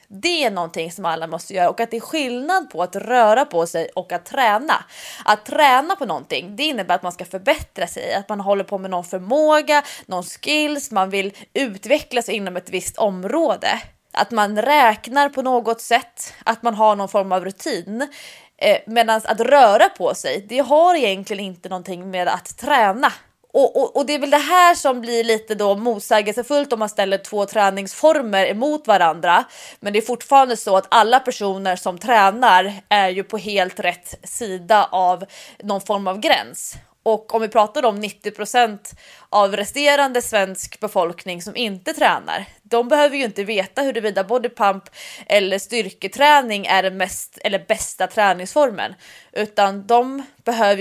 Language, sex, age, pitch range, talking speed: English, female, 20-39, 195-260 Hz, 170 wpm